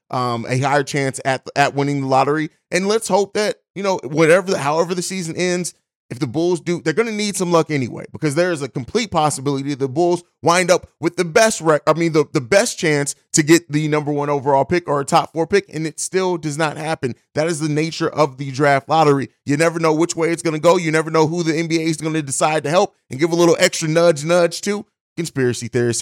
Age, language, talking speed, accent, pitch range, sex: 30-49, English, 250 wpm, American, 130-170 Hz, male